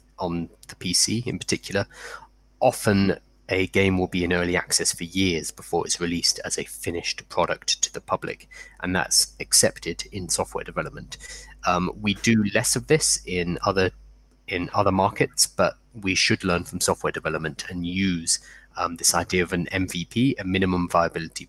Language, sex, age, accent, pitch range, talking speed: English, male, 20-39, British, 90-105 Hz, 170 wpm